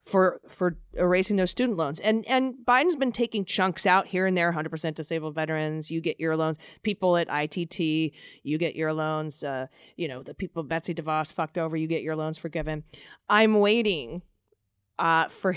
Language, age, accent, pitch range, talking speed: English, 30-49, American, 160-200 Hz, 185 wpm